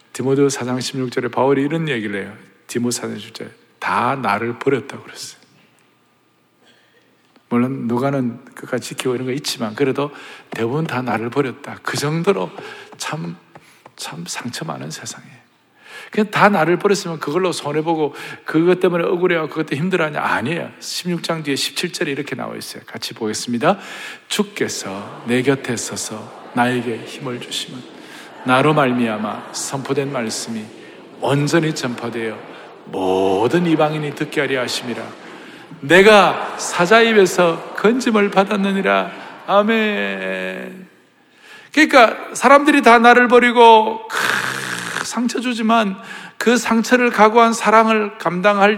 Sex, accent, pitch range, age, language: male, native, 125-210 Hz, 50-69, Korean